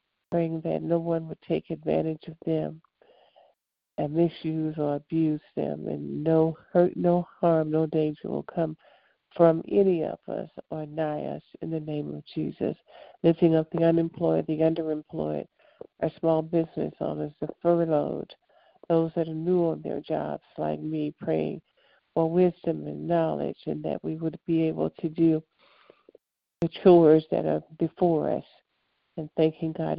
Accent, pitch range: American, 155-175 Hz